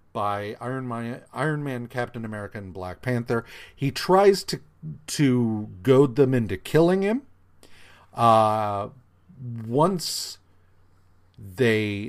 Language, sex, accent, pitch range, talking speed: English, male, American, 95-125 Hz, 110 wpm